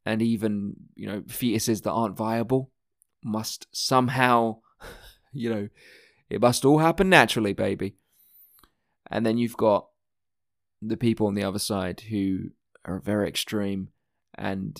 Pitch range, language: 100-135 Hz, English